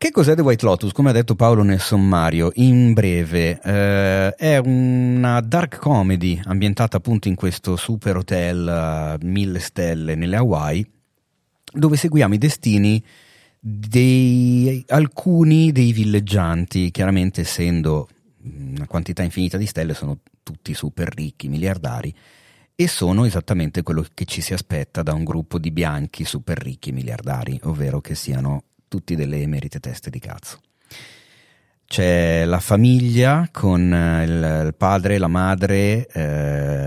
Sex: male